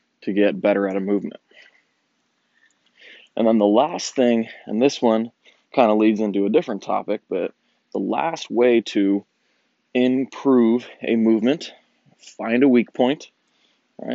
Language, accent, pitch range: English, American, 105-125 Hz